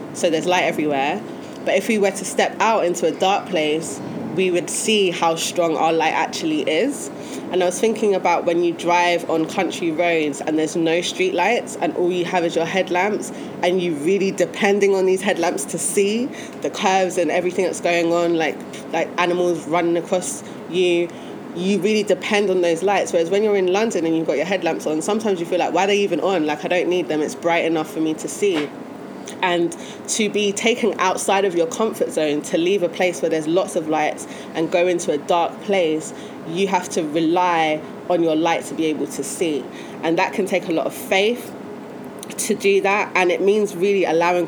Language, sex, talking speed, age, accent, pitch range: English, female, 215 wpm, 20-39, British, 170-205 Hz